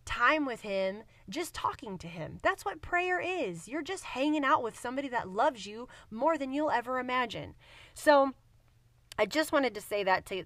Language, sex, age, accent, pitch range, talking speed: English, female, 20-39, American, 190-255 Hz, 190 wpm